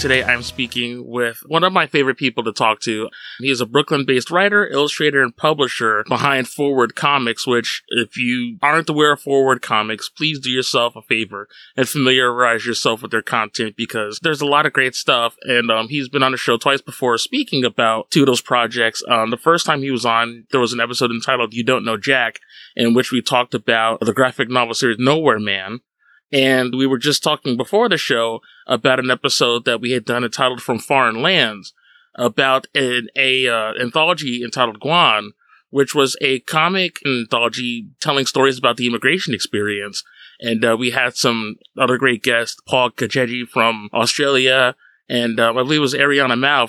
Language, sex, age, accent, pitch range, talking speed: English, male, 20-39, American, 115-140 Hz, 190 wpm